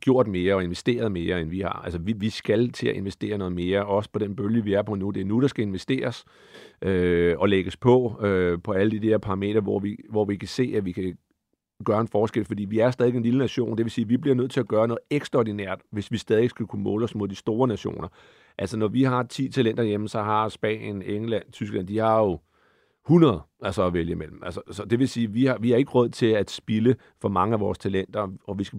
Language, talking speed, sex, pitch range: Danish, 265 wpm, male, 100-125 Hz